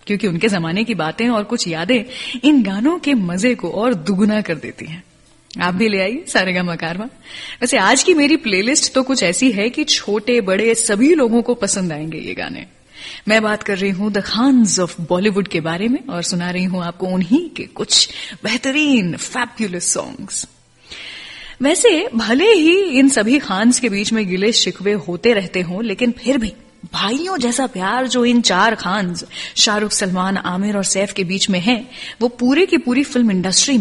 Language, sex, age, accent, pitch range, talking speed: Gujarati, female, 30-49, native, 195-265 Hz, 185 wpm